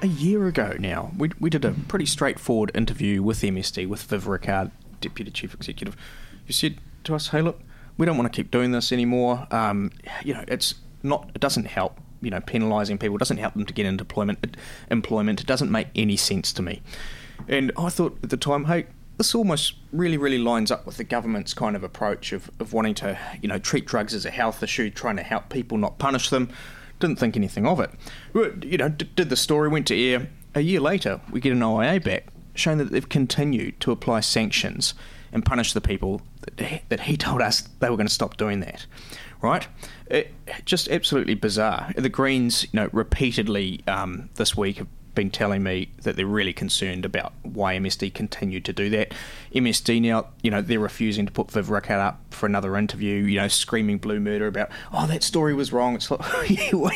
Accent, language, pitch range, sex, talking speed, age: Australian, English, 105-150 Hz, male, 205 wpm, 20-39